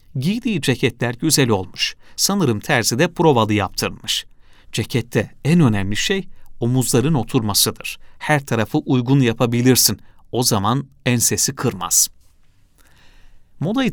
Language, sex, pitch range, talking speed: Turkish, male, 110-155 Hz, 105 wpm